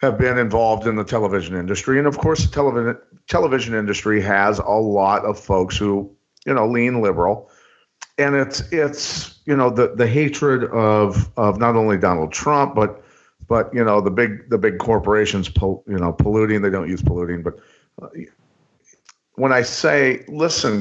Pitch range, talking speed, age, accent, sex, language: 105-135 Hz, 175 wpm, 50-69, American, male, English